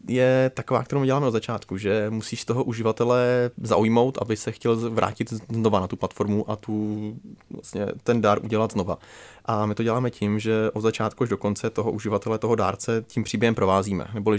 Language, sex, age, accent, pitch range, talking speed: Czech, male, 20-39, native, 105-115 Hz, 190 wpm